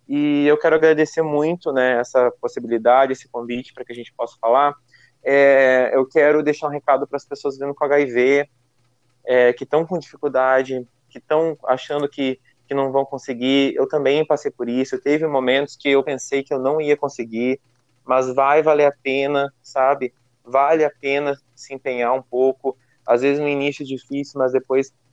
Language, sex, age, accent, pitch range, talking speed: Portuguese, male, 20-39, Brazilian, 125-145 Hz, 185 wpm